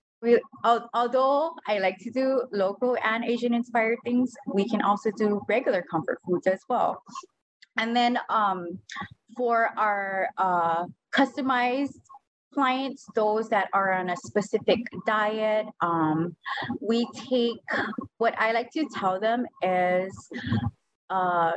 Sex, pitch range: female, 190-250 Hz